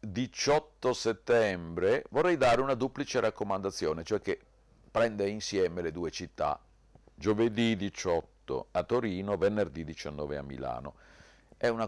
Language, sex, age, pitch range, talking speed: Italian, male, 50-69, 75-110 Hz, 120 wpm